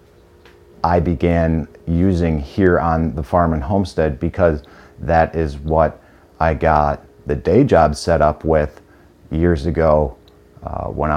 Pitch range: 75-85 Hz